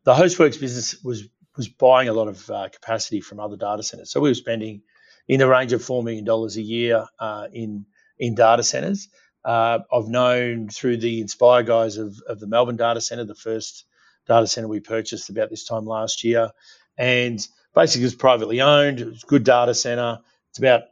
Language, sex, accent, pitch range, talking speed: English, male, Australian, 110-130 Hz, 200 wpm